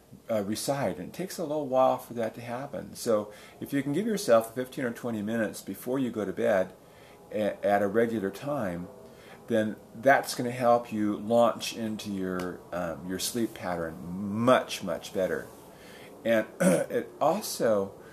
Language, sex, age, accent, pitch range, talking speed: English, male, 40-59, American, 95-125 Hz, 165 wpm